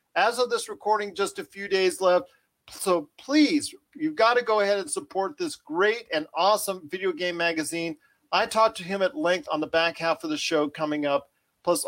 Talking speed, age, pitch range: 205 wpm, 40-59, 155-225 Hz